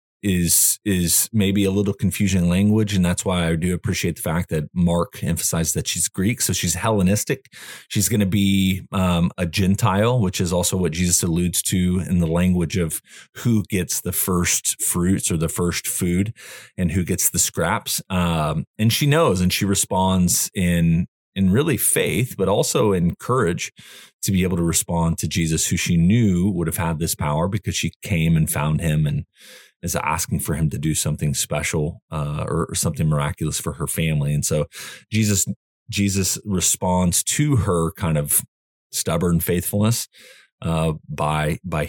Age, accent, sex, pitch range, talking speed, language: 30-49, American, male, 80-95 Hz, 175 wpm, English